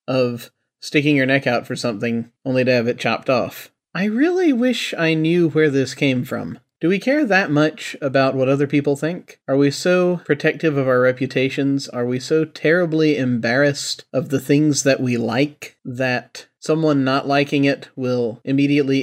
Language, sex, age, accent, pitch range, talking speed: English, male, 30-49, American, 130-160 Hz, 180 wpm